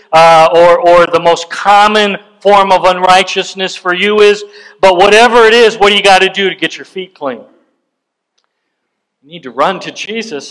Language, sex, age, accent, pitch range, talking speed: English, male, 50-69, American, 155-220 Hz, 190 wpm